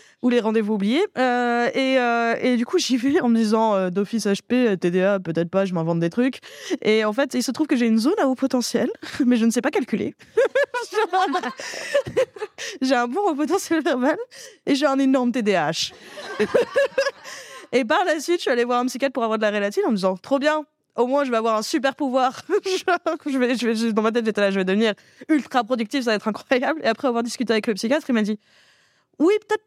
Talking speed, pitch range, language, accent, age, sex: 240 wpm, 225-330 Hz, French, French, 20-39, female